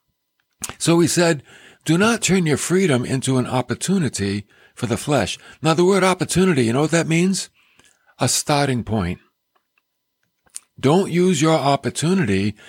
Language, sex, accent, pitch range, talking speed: English, male, American, 115-175 Hz, 140 wpm